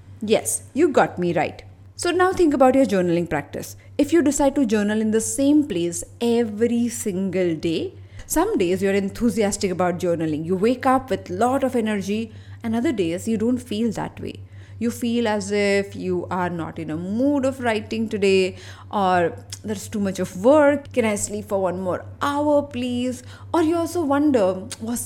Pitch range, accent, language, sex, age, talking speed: 170-255 Hz, Indian, English, female, 20-39, 185 wpm